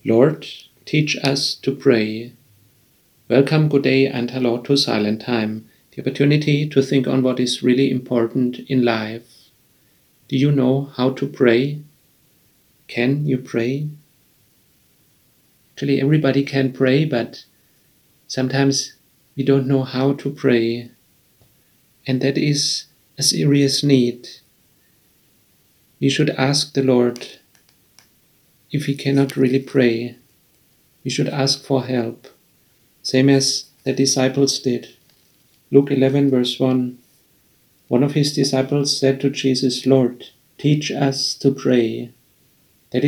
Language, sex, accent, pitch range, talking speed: English, male, German, 125-140 Hz, 125 wpm